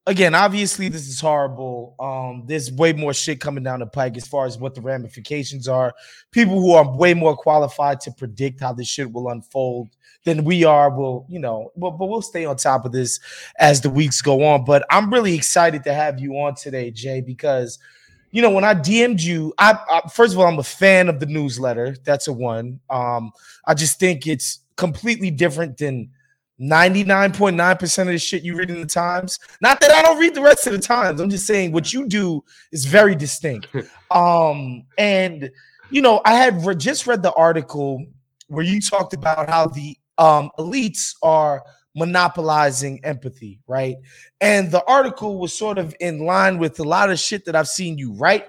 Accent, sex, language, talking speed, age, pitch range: American, male, English, 195 wpm, 20-39, 135-190 Hz